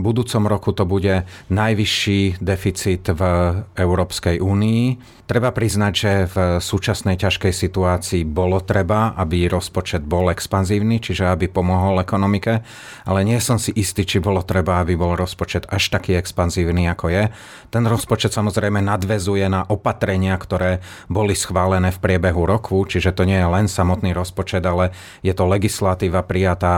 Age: 30-49